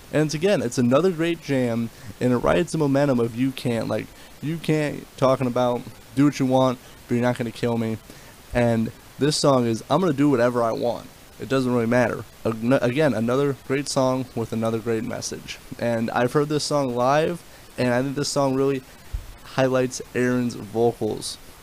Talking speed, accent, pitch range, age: 190 wpm, American, 115-140 Hz, 20-39